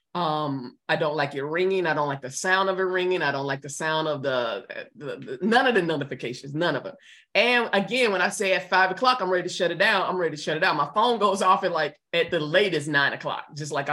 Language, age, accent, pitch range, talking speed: English, 20-39, American, 155-220 Hz, 270 wpm